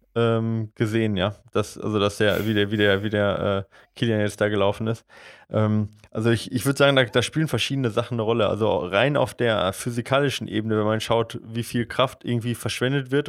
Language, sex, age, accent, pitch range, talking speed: German, male, 20-39, German, 110-125 Hz, 210 wpm